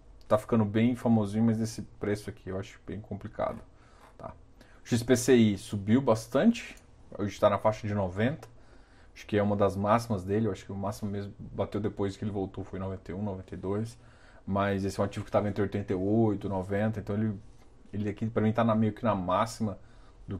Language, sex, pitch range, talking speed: Portuguese, male, 100-115 Hz, 195 wpm